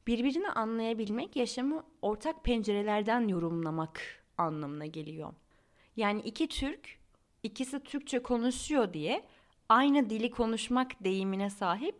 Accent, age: native, 30-49